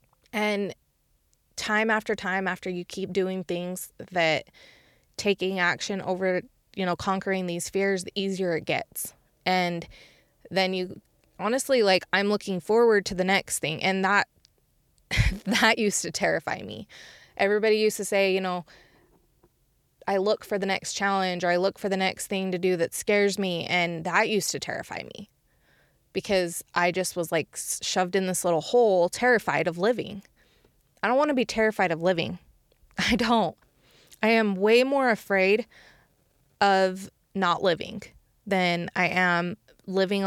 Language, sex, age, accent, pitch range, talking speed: English, female, 20-39, American, 175-205 Hz, 155 wpm